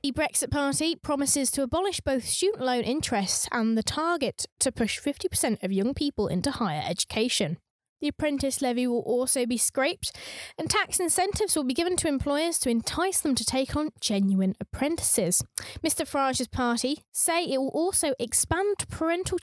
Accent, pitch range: British, 235-305 Hz